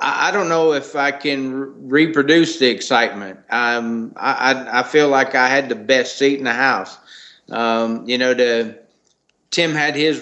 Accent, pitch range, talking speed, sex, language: American, 120-140 Hz, 170 wpm, male, English